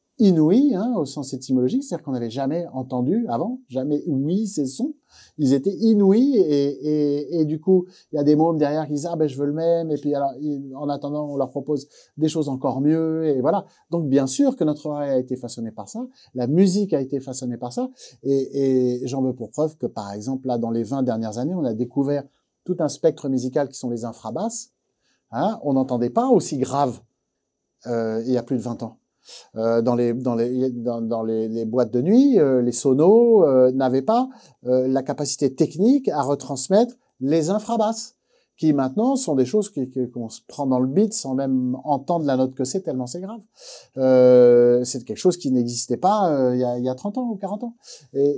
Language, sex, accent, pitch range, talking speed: French, male, French, 130-170 Hz, 225 wpm